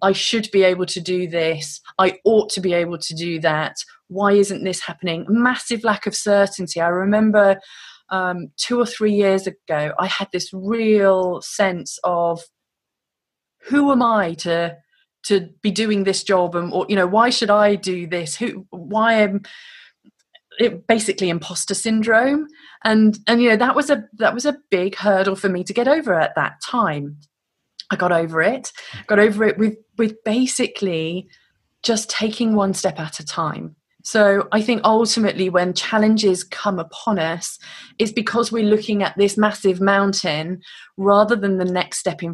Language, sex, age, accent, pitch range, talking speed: English, female, 30-49, British, 180-220 Hz, 175 wpm